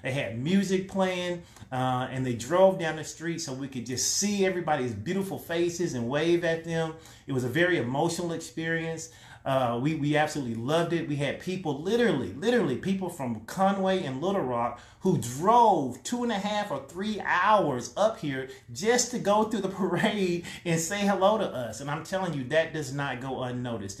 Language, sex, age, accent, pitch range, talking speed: English, male, 30-49, American, 130-180 Hz, 195 wpm